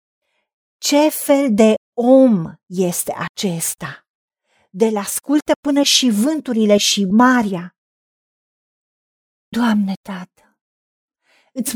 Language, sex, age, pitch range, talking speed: Romanian, female, 50-69, 205-255 Hz, 80 wpm